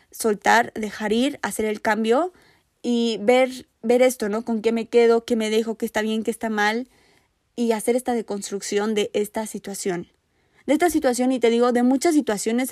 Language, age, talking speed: Spanish, 20-39, 190 wpm